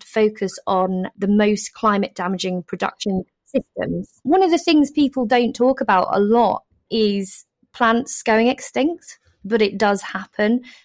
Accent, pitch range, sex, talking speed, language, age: British, 190-230 Hz, female, 145 wpm, English, 20-39